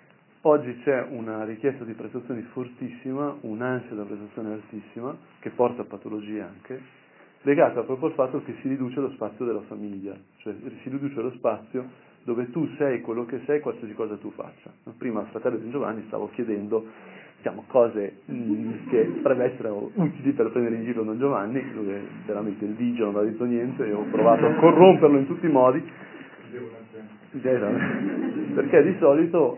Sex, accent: male, native